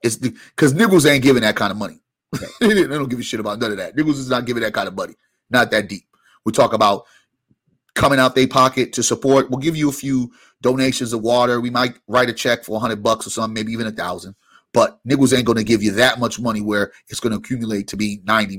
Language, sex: English, male